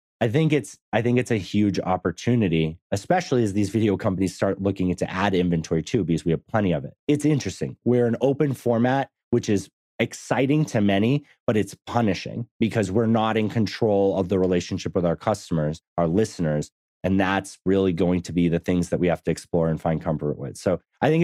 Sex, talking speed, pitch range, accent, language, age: male, 205 wpm, 95-120 Hz, American, English, 30-49